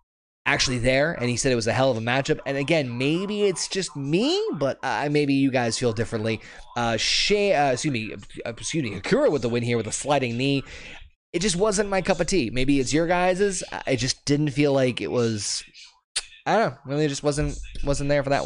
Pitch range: 115-155 Hz